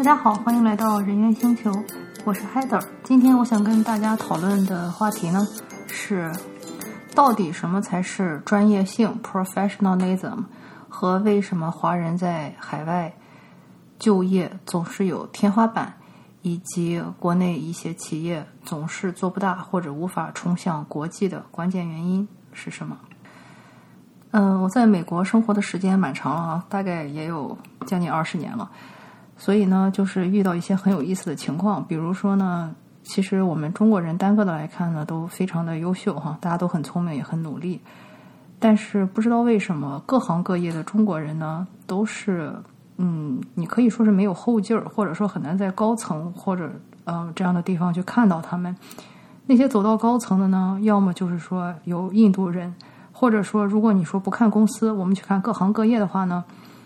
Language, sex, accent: English, female, Chinese